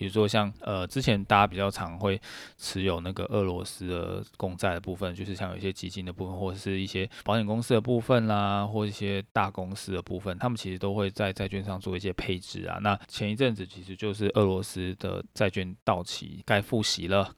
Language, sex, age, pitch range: Chinese, male, 20-39, 95-105 Hz